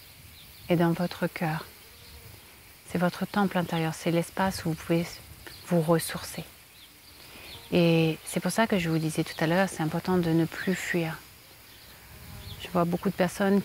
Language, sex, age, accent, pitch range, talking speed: French, female, 30-49, French, 150-180 Hz, 165 wpm